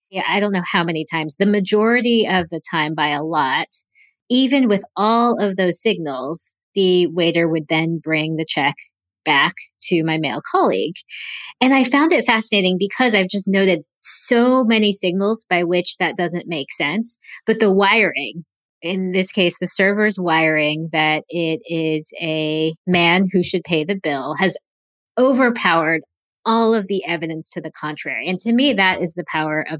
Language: English